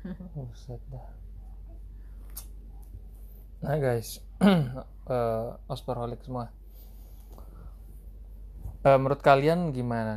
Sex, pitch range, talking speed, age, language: male, 95-130 Hz, 60 wpm, 20-39, Indonesian